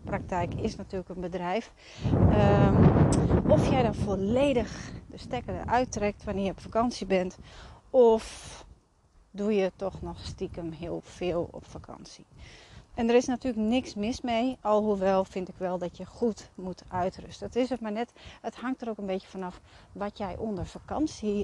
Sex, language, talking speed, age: female, Dutch, 170 wpm, 40-59